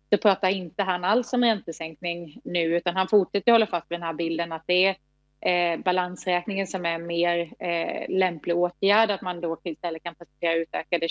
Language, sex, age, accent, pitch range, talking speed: English, female, 30-49, Swedish, 170-185 Hz, 190 wpm